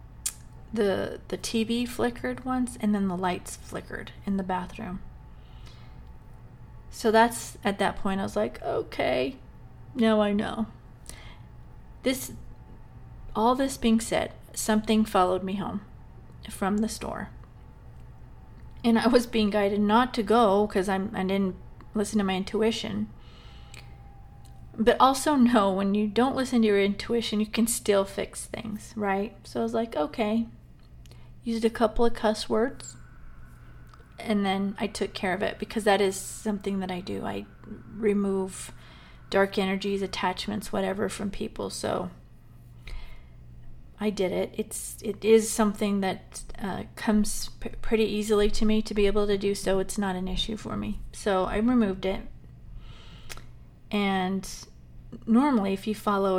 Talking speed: 145 wpm